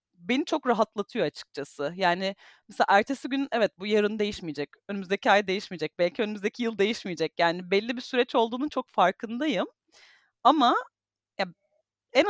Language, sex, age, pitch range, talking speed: Turkish, female, 30-49, 195-260 Hz, 140 wpm